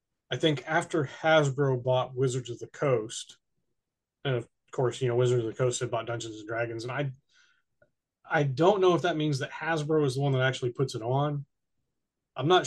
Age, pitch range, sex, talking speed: 30-49, 125-150 Hz, male, 205 wpm